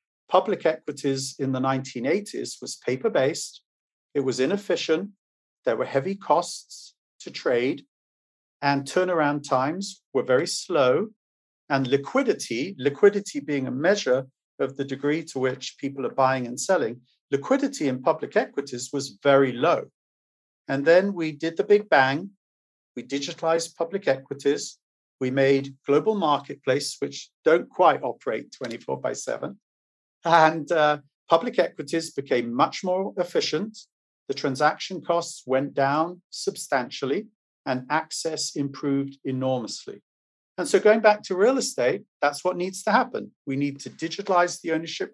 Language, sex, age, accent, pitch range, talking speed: English, male, 40-59, British, 135-180 Hz, 140 wpm